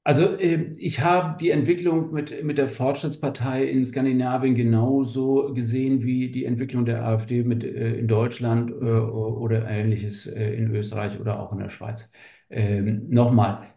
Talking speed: 155 wpm